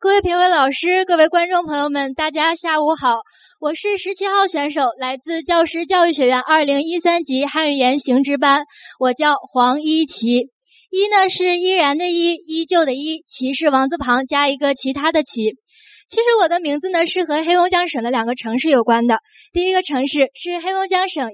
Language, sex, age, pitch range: Chinese, female, 20-39, 265-365 Hz